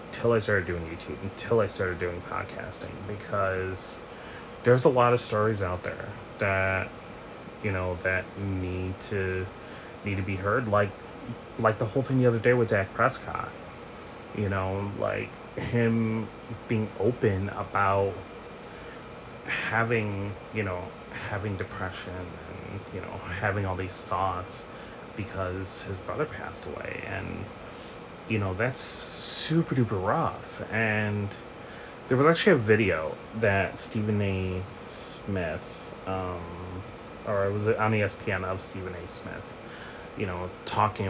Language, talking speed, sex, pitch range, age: English, 135 wpm, male, 95-115 Hz, 30-49